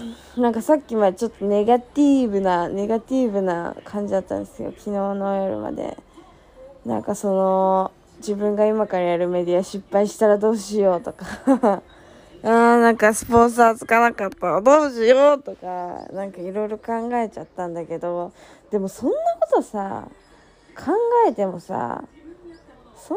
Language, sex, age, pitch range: Japanese, female, 20-39, 200-290 Hz